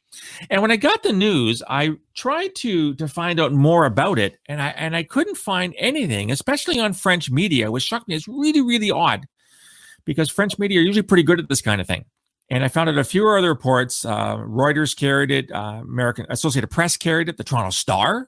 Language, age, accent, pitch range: English, 40-59, American, 115-175 Hz